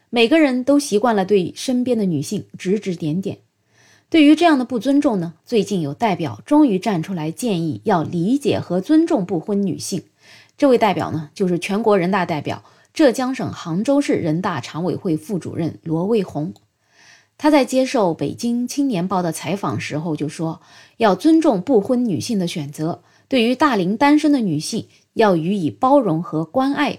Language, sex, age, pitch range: Chinese, female, 20-39, 175-260 Hz